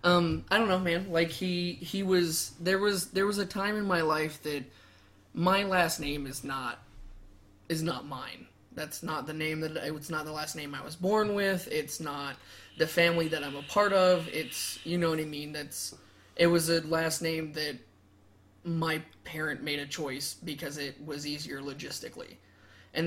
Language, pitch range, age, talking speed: English, 145-170 Hz, 20-39, 190 wpm